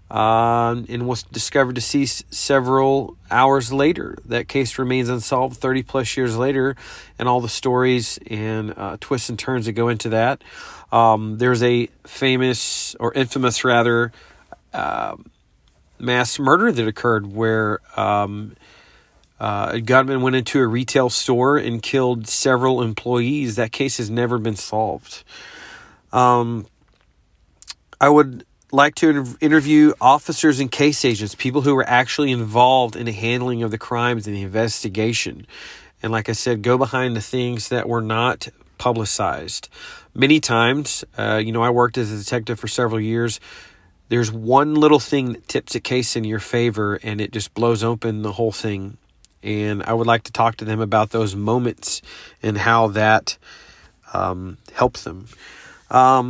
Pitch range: 110-130 Hz